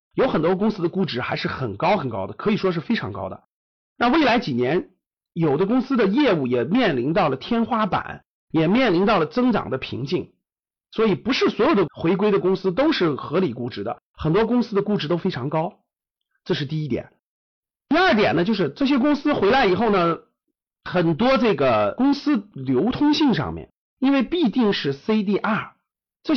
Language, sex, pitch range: Chinese, male, 175-260 Hz